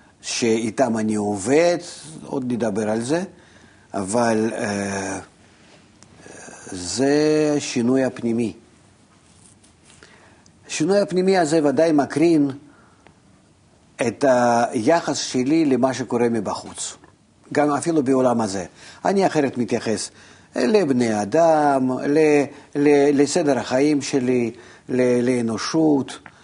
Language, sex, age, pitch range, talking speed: Hebrew, male, 50-69, 115-150 Hz, 80 wpm